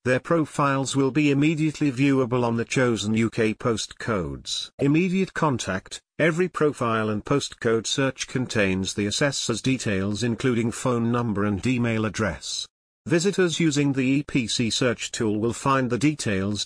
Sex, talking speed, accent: male, 135 wpm, British